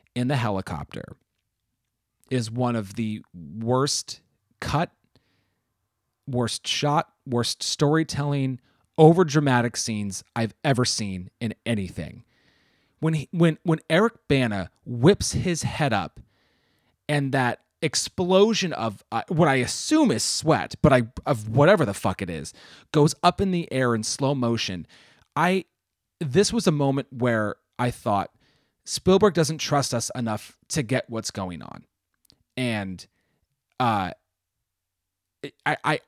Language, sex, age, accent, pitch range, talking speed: English, male, 30-49, American, 110-160 Hz, 130 wpm